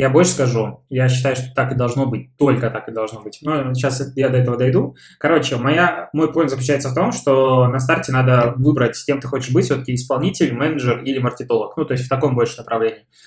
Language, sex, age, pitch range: Russian, male, 20-39, 120-140 Hz